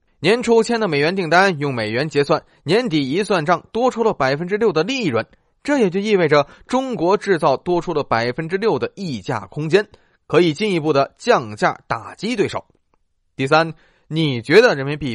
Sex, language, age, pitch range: male, Chinese, 20-39, 145-205 Hz